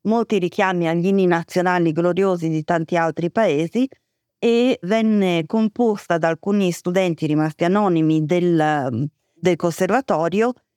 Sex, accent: female, native